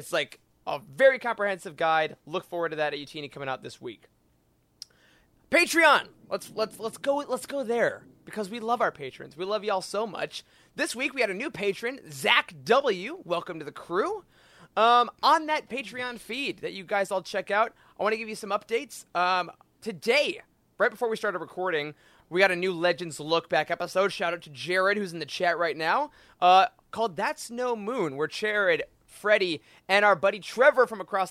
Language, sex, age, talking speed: English, male, 30-49, 200 wpm